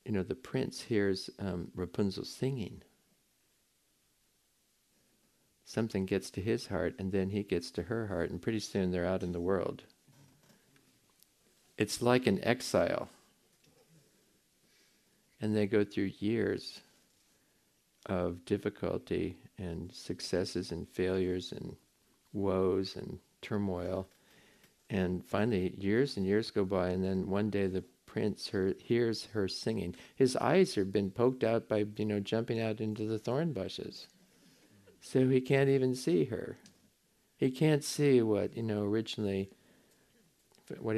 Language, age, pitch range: English, 50-69, 95-115 Hz